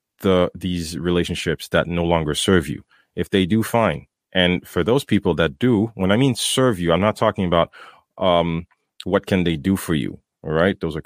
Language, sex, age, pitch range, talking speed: English, male, 30-49, 85-105 Hz, 205 wpm